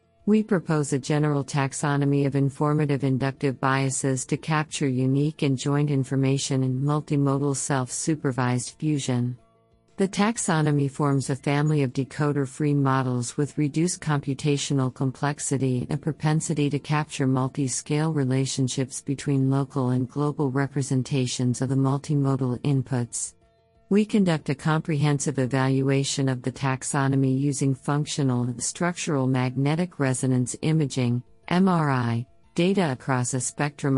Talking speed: 120 wpm